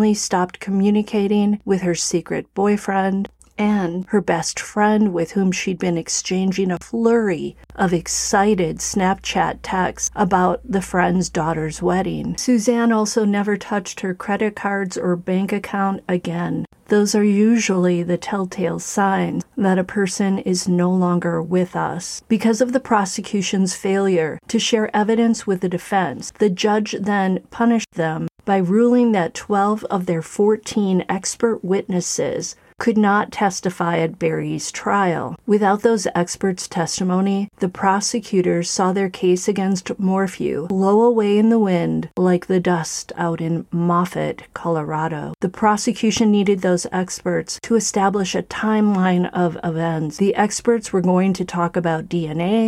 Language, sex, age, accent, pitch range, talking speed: English, female, 40-59, American, 180-210 Hz, 140 wpm